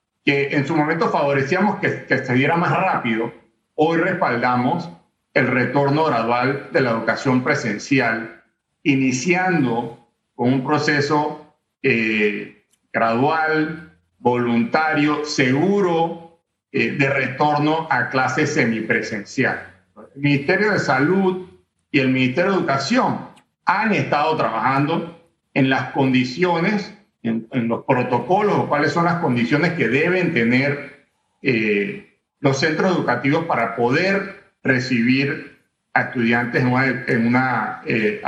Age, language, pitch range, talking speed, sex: 50-69, Spanish, 125-170 Hz, 120 wpm, male